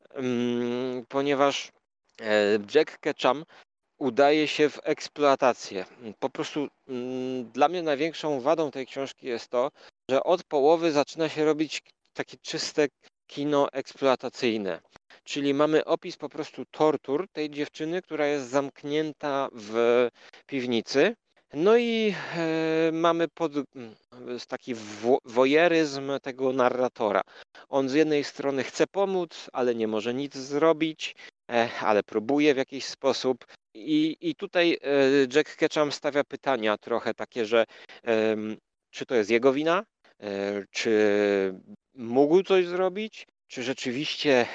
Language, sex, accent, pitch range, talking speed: Polish, male, native, 120-155 Hz, 115 wpm